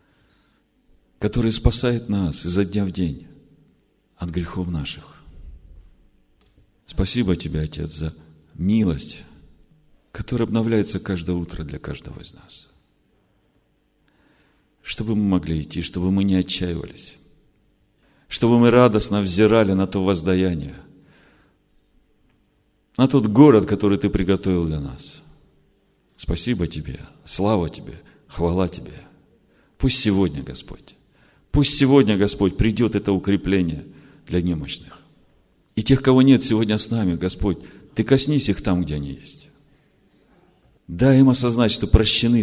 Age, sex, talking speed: 50-69, male, 115 wpm